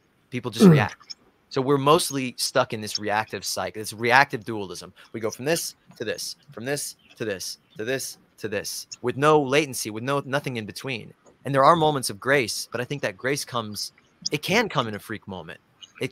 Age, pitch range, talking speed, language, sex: 30-49, 105-130 Hz, 210 wpm, English, male